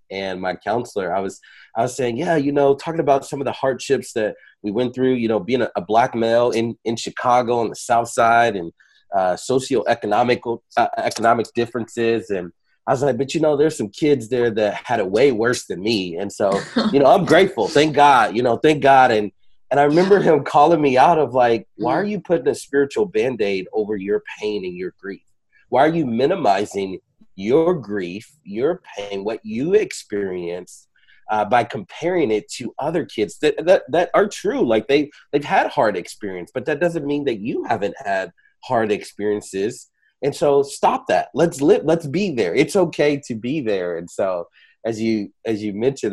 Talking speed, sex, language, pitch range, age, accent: 200 wpm, male, English, 110-165 Hz, 30-49, American